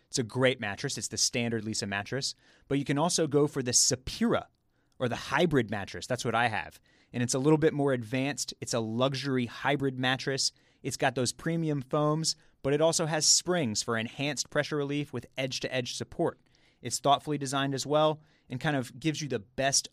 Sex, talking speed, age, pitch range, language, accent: male, 205 wpm, 30-49, 115-145 Hz, English, American